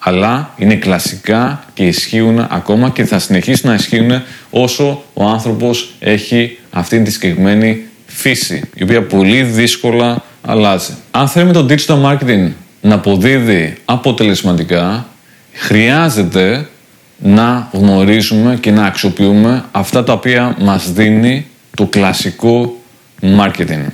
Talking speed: 115 wpm